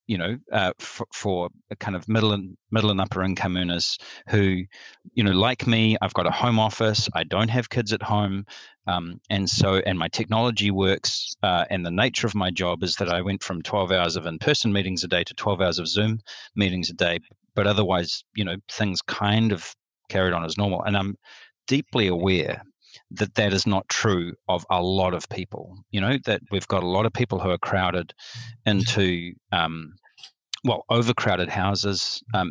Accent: Australian